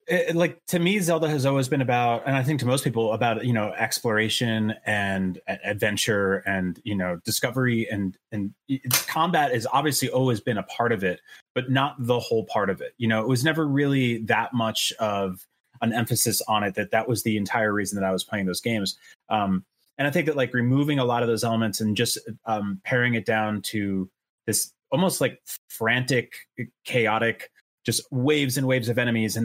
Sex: male